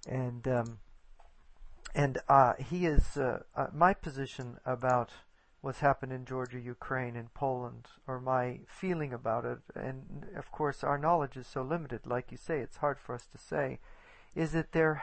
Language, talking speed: English, 170 wpm